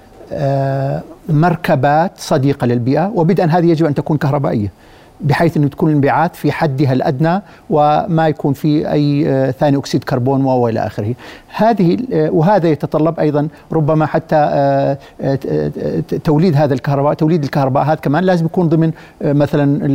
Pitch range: 135-160 Hz